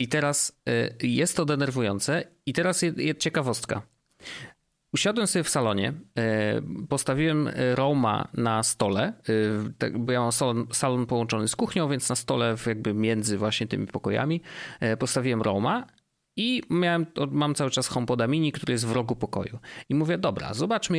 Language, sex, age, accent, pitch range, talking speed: Polish, male, 30-49, native, 115-155 Hz, 145 wpm